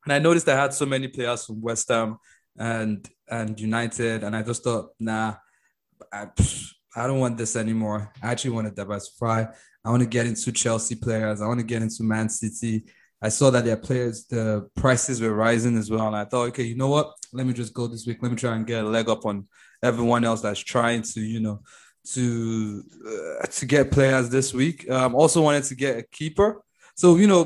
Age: 20-39